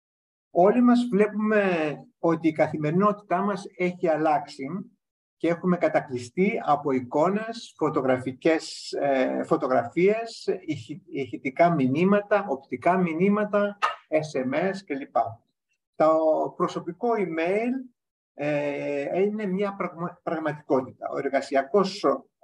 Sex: male